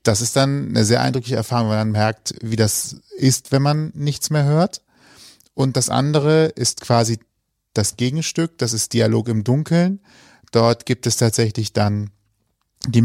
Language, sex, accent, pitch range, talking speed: German, male, German, 110-135 Hz, 165 wpm